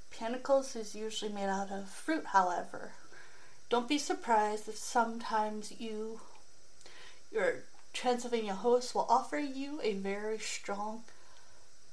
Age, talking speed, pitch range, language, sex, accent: 30-49, 115 wpm, 215-300 Hz, English, female, American